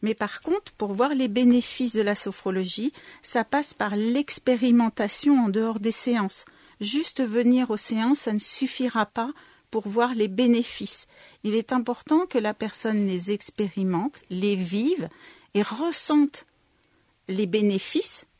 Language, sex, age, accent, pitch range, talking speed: French, female, 50-69, French, 205-260 Hz, 145 wpm